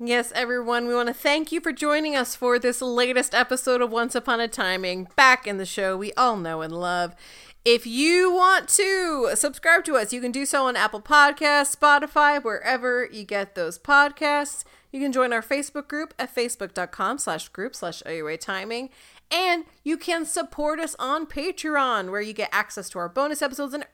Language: English